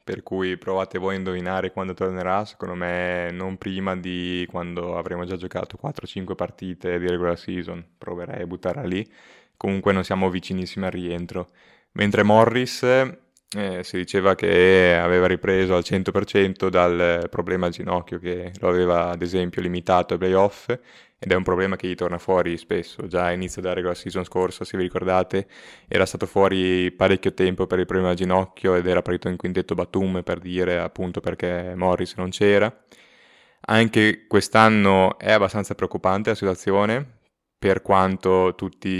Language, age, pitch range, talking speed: Italian, 20-39, 90-95 Hz, 165 wpm